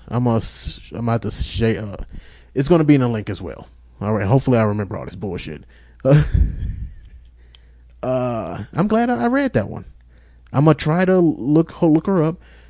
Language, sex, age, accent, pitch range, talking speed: English, male, 30-49, American, 100-140 Hz, 190 wpm